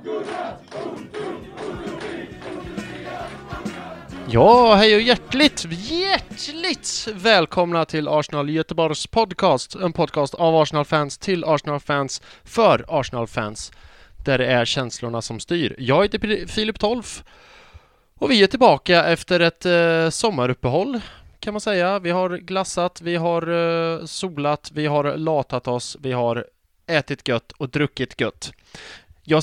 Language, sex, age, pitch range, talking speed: English, male, 20-39, 120-175 Hz, 120 wpm